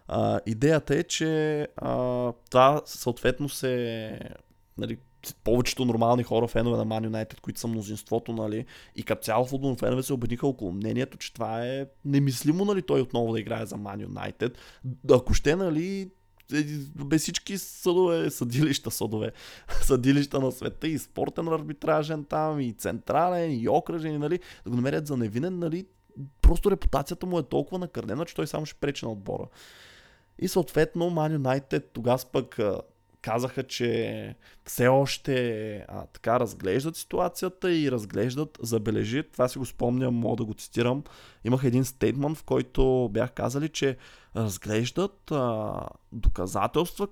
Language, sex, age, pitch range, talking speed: Bulgarian, male, 20-39, 115-150 Hz, 145 wpm